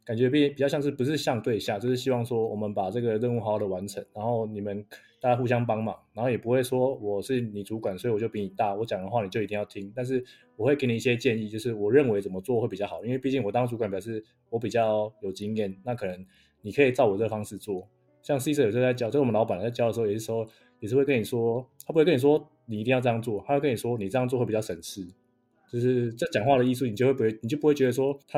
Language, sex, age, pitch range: Chinese, male, 20-39, 110-130 Hz